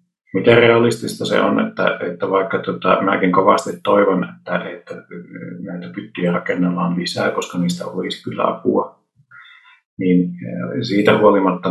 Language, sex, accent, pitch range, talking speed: Finnish, male, native, 90-95 Hz, 130 wpm